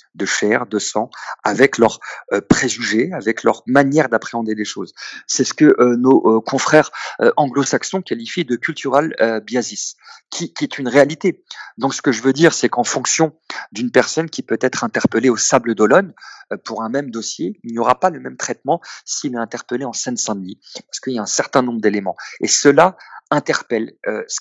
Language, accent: French, French